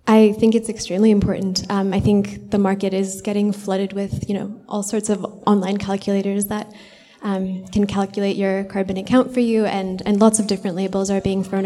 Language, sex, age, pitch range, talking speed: English, female, 10-29, 185-205 Hz, 200 wpm